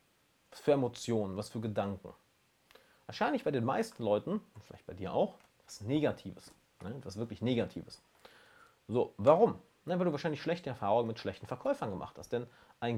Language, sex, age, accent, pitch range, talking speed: German, male, 40-59, German, 110-165 Hz, 155 wpm